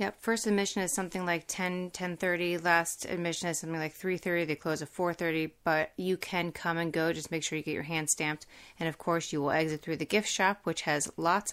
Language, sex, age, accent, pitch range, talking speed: English, female, 30-49, American, 150-175 Hz, 235 wpm